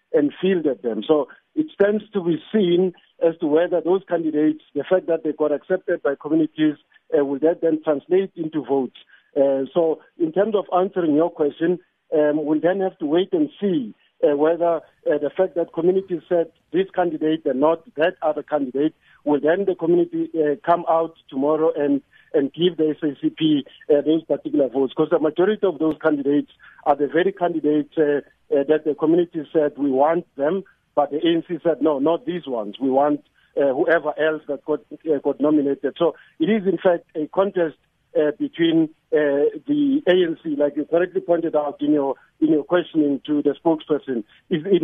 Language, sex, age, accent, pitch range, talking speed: English, male, 50-69, South African, 150-175 Hz, 185 wpm